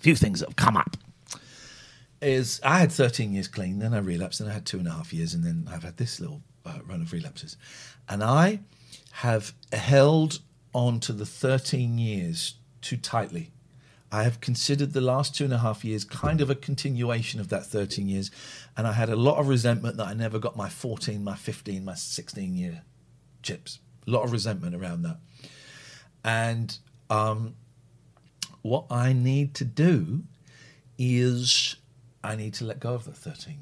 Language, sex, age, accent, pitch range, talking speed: English, male, 50-69, British, 110-140 Hz, 185 wpm